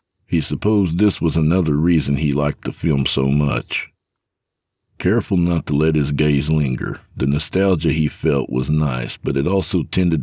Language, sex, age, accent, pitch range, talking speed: English, male, 60-79, American, 70-90 Hz, 170 wpm